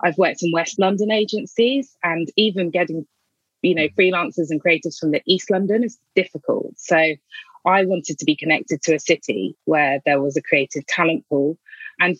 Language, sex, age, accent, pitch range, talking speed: English, female, 20-39, British, 155-190 Hz, 180 wpm